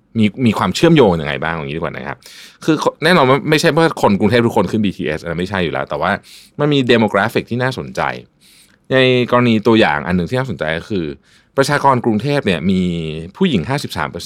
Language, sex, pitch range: Thai, male, 95-140 Hz